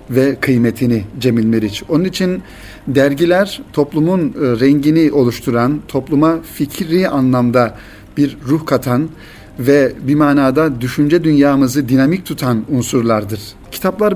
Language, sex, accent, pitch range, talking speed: Turkish, male, native, 120-150 Hz, 105 wpm